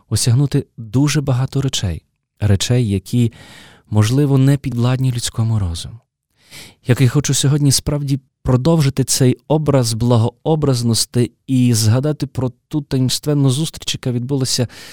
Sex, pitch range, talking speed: male, 110-140 Hz, 110 wpm